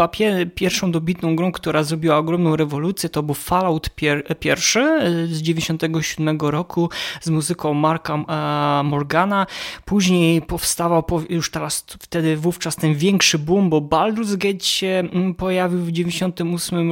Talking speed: 130 wpm